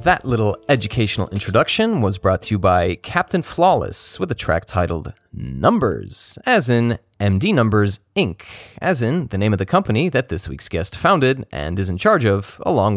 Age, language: 30-49, English